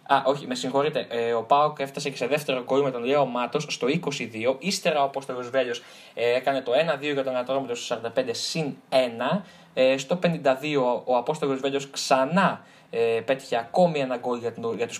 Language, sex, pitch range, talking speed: Greek, male, 125-160 Hz, 165 wpm